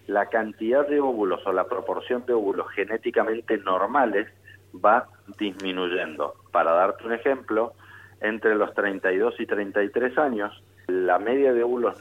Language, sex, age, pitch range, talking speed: Spanish, male, 50-69, 105-130 Hz, 135 wpm